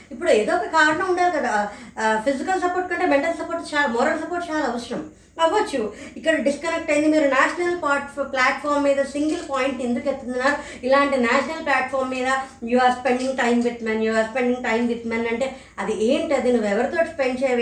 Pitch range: 235-290 Hz